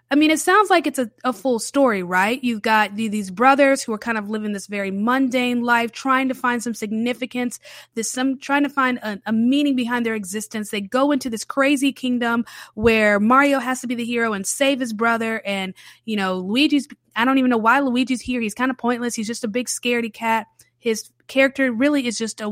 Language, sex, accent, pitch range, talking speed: English, female, American, 210-260 Hz, 225 wpm